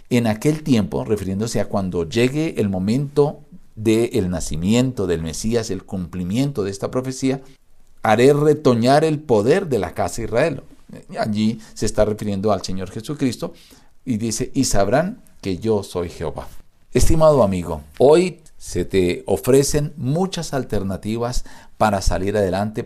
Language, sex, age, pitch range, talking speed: Spanish, male, 50-69, 95-145 Hz, 140 wpm